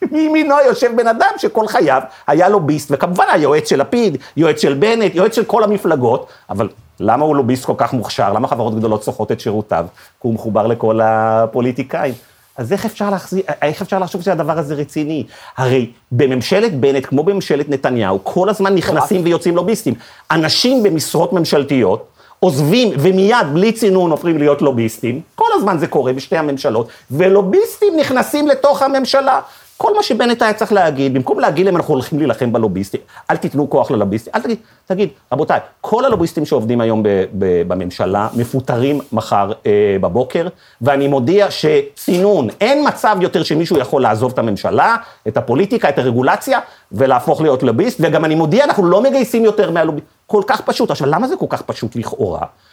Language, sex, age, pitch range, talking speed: Hebrew, male, 40-59, 135-215 Hz, 155 wpm